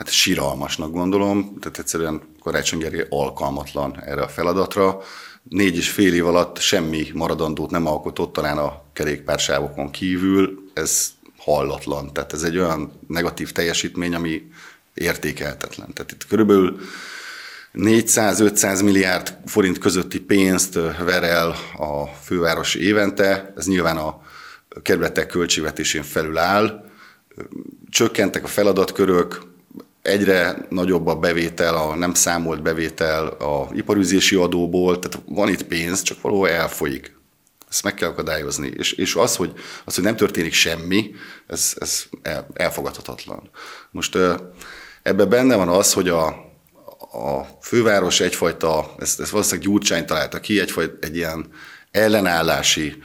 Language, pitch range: Hungarian, 80-95 Hz